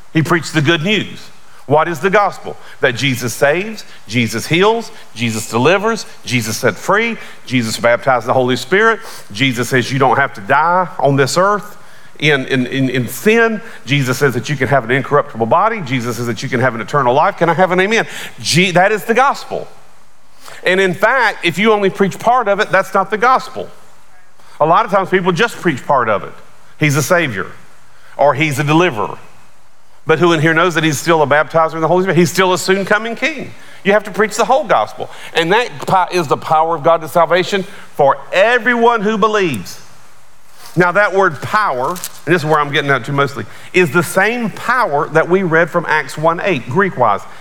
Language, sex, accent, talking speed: English, male, American, 205 wpm